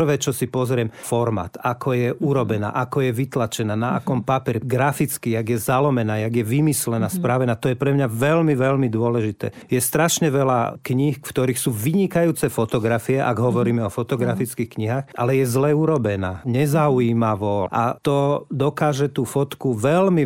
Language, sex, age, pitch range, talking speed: Slovak, male, 40-59, 115-140 Hz, 155 wpm